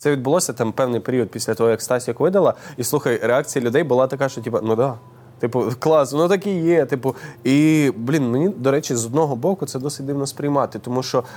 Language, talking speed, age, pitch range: Ukrainian, 215 wpm, 20-39, 125-155 Hz